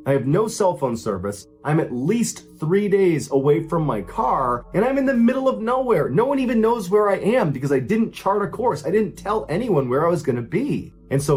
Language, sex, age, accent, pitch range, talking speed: English, male, 30-49, American, 120-175 Hz, 245 wpm